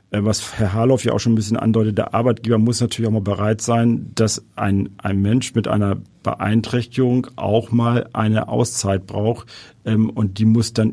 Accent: German